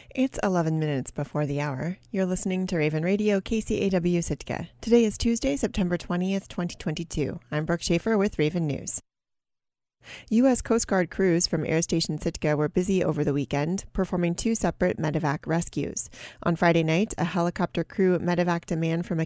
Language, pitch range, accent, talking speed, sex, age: English, 160-190 Hz, American, 170 wpm, female, 30-49